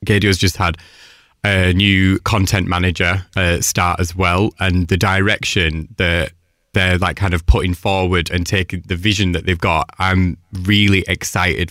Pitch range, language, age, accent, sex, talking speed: 90-110 Hz, English, 20-39, British, male, 160 wpm